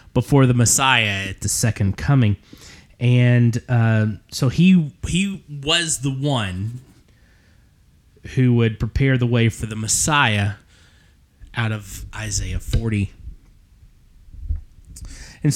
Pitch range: 100-130 Hz